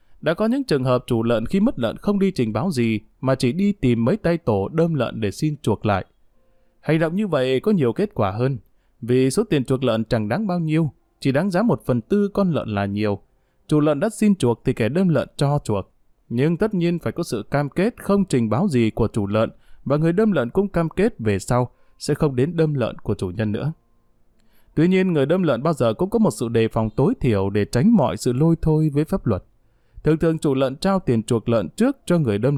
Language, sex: Vietnamese, male